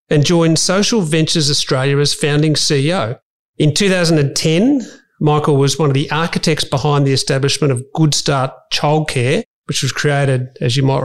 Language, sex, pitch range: English, male, 140-160 Hz